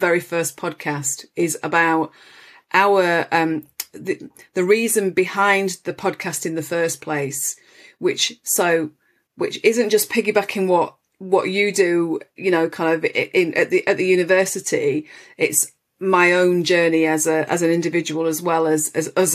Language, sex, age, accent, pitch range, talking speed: English, female, 30-49, British, 160-190 Hz, 160 wpm